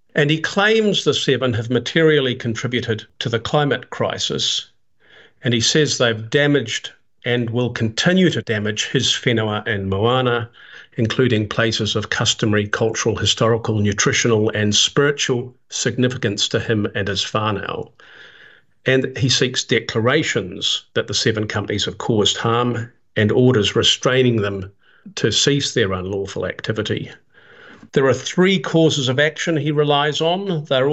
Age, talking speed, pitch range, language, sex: 50-69, 140 wpm, 110-140 Hz, English, male